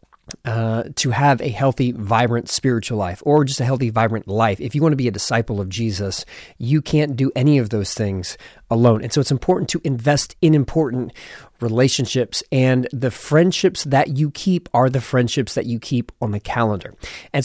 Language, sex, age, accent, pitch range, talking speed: English, male, 30-49, American, 115-150 Hz, 195 wpm